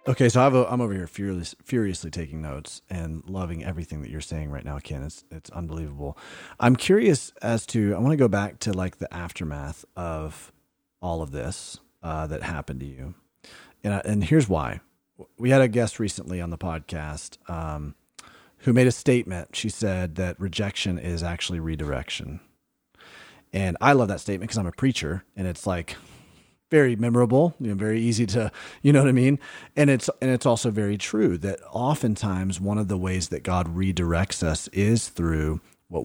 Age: 30-49